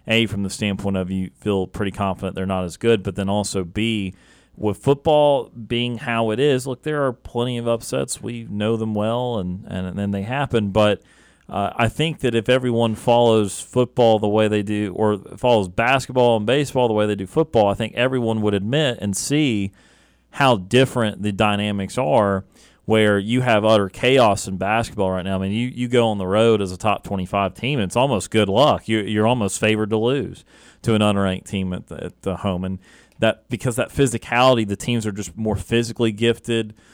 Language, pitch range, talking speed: English, 100-120 Hz, 210 wpm